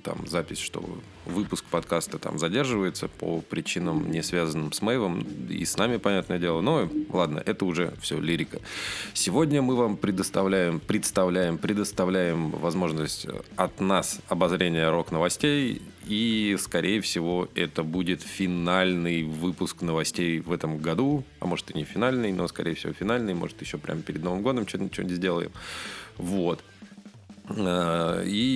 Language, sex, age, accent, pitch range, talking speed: Russian, male, 20-39, native, 85-105 Hz, 135 wpm